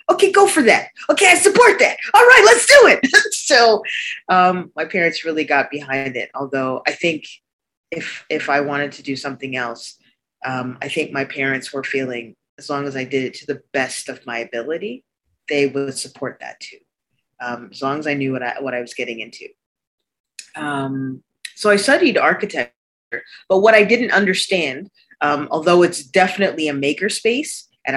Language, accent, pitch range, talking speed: English, American, 135-185 Hz, 185 wpm